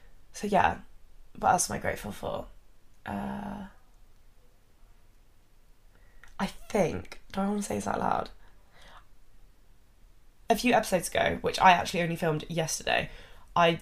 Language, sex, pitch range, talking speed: English, female, 155-195 Hz, 130 wpm